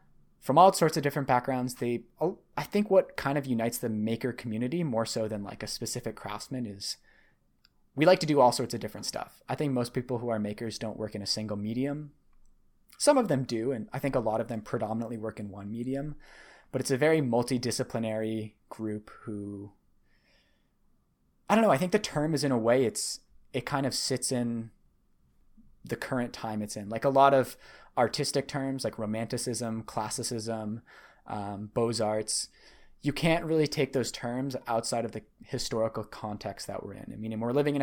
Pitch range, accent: 110-135 Hz, American